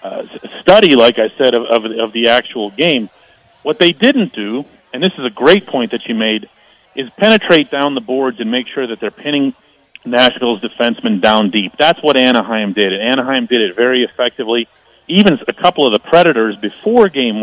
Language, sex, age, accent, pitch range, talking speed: English, male, 40-59, American, 120-160 Hz, 195 wpm